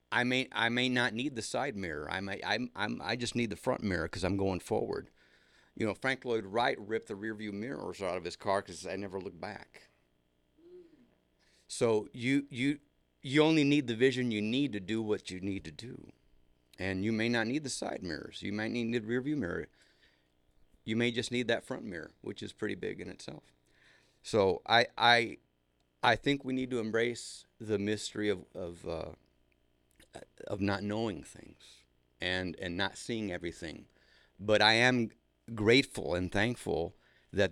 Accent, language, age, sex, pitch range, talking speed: American, English, 50-69, male, 85-120 Hz, 190 wpm